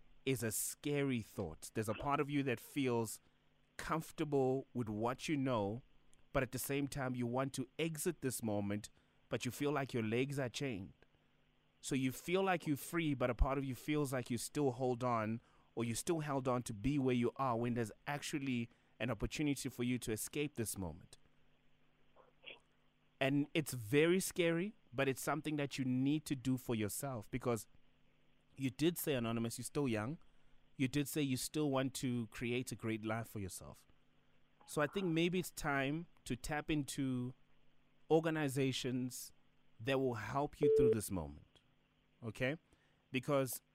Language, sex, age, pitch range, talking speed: English, male, 30-49, 115-145 Hz, 175 wpm